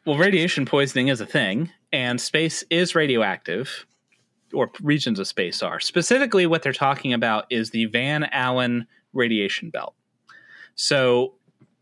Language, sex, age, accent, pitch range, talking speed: English, male, 30-49, American, 115-145 Hz, 135 wpm